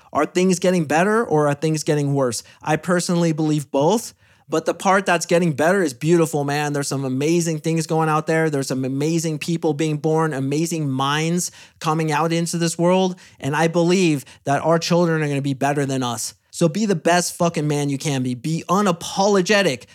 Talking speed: 195 wpm